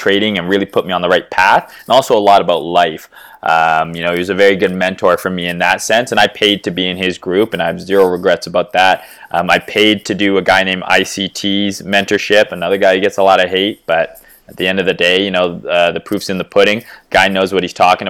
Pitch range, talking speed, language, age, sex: 95-110 Hz, 270 wpm, English, 20-39, male